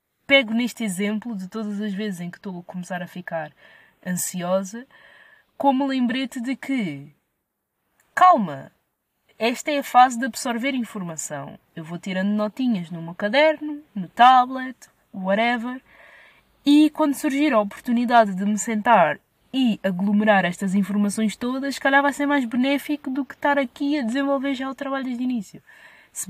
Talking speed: 155 wpm